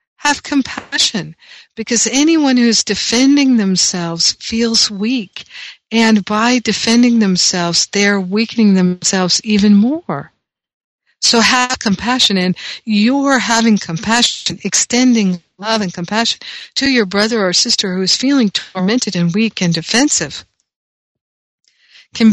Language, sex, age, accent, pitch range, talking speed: English, female, 60-79, American, 180-230 Hz, 115 wpm